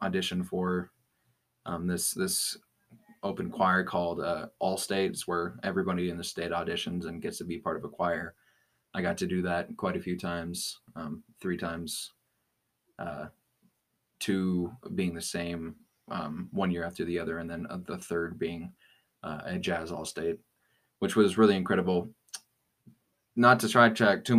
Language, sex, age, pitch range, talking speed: English, male, 20-39, 90-95 Hz, 165 wpm